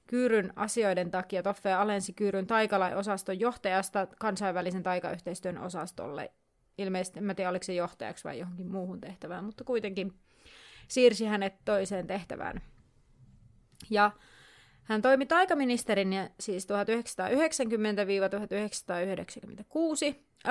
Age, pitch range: 30-49, 190-235 Hz